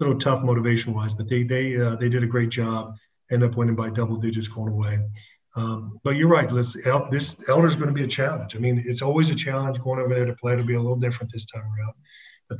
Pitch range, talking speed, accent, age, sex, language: 115-130 Hz, 260 wpm, American, 40-59, male, English